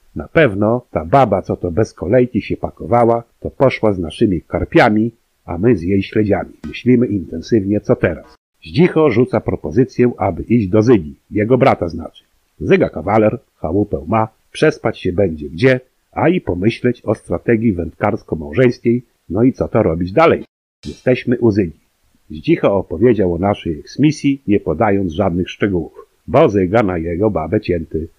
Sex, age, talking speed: male, 50-69, 155 wpm